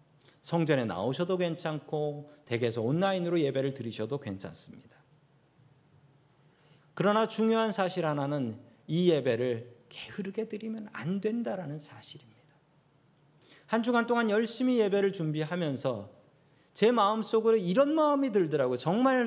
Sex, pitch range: male, 145-205 Hz